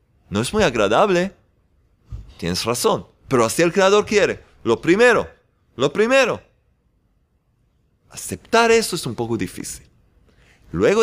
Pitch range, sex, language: 105-160 Hz, male, Spanish